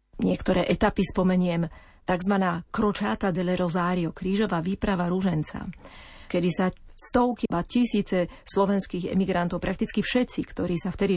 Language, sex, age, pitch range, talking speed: Slovak, female, 40-59, 175-200 Hz, 125 wpm